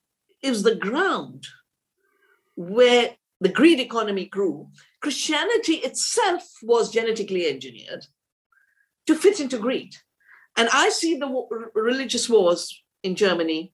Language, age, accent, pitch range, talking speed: English, 50-69, Indian, 220-335 Hz, 110 wpm